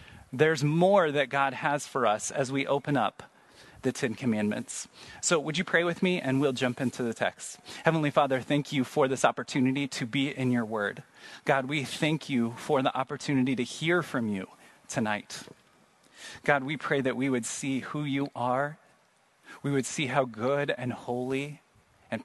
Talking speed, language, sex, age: 185 wpm, English, male, 30-49